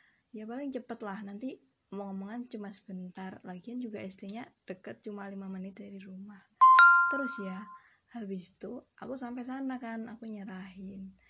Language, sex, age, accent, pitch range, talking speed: Indonesian, female, 20-39, native, 195-230 Hz, 150 wpm